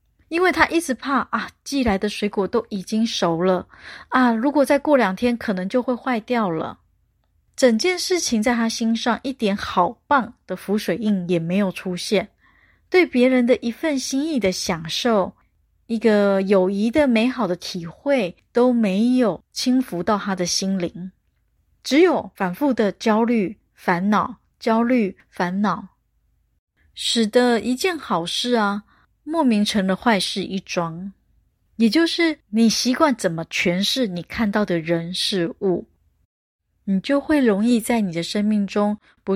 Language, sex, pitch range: Chinese, female, 185-245 Hz